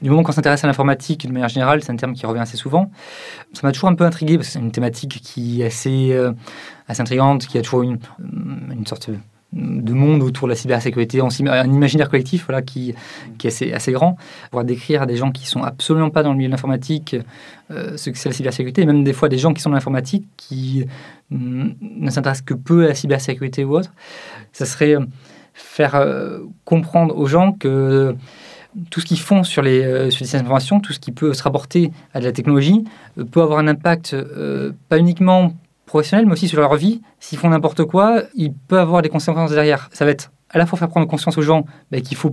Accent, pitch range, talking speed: French, 130-165 Hz, 230 wpm